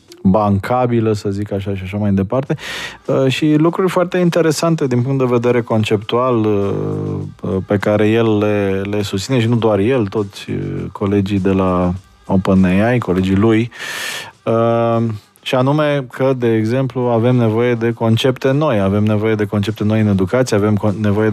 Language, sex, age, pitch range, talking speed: Romanian, male, 20-39, 100-120 Hz, 150 wpm